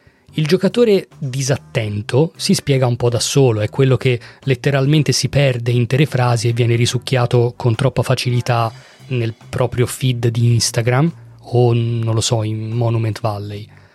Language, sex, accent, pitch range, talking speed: Italian, male, native, 120-150 Hz, 150 wpm